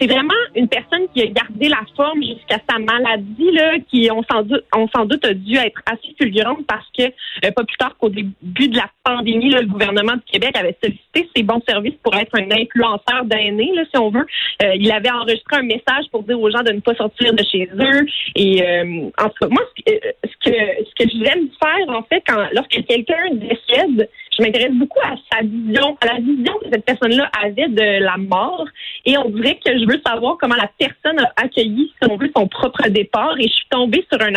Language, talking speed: French, 225 wpm